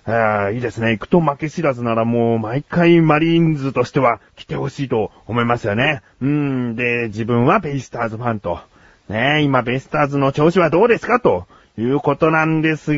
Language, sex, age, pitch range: Japanese, male, 30-49, 120-180 Hz